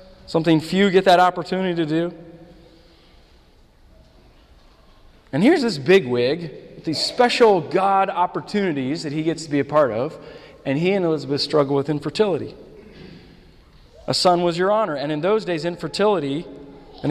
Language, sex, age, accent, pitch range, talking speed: English, male, 40-59, American, 150-205 Hz, 145 wpm